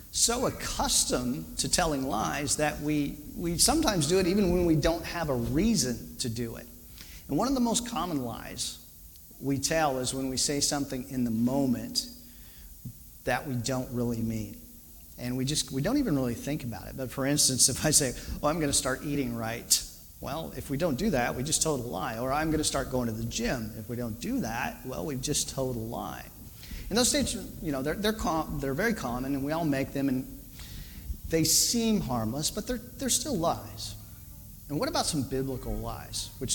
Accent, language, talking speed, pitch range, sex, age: American, English, 210 wpm, 115-145 Hz, male, 40-59